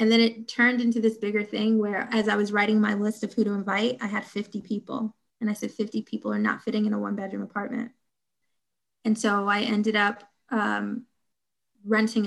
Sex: female